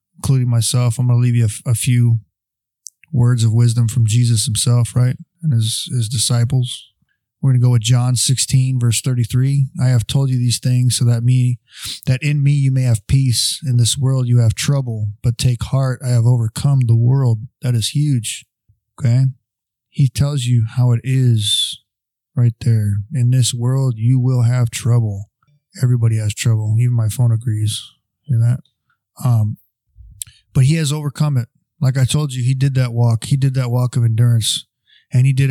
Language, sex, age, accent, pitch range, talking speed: English, male, 20-39, American, 120-135 Hz, 190 wpm